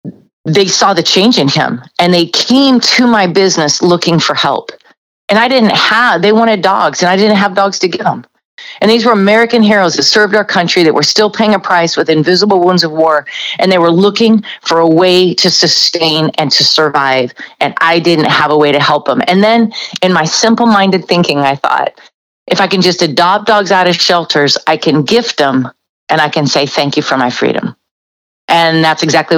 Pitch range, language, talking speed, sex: 150-190 Hz, English, 210 wpm, female